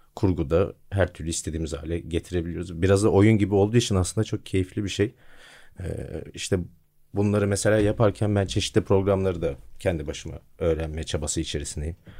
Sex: male